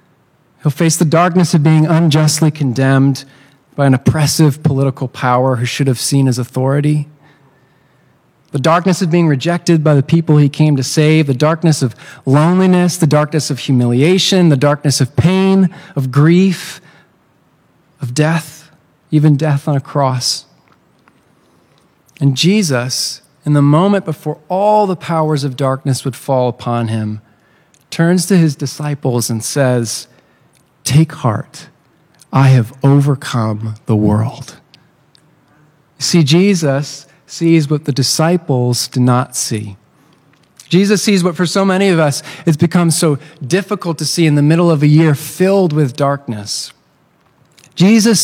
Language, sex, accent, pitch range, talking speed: English, male, American, 135-170 Hz, 140 wpm